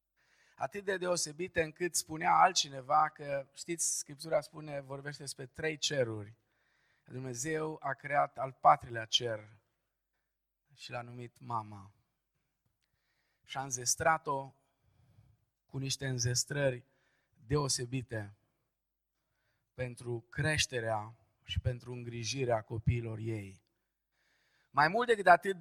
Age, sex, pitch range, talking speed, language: 20-39, male, 125-160 Hz, 100 wpm, Romanian